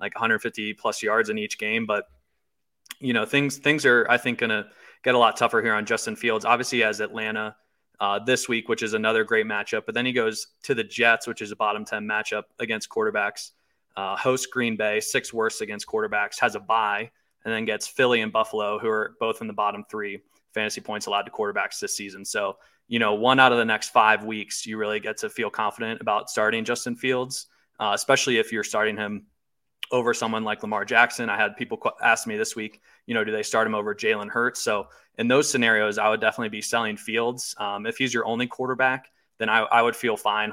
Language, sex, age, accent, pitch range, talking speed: English, male, 20-39, American, 110-130 Hz, 220 wpm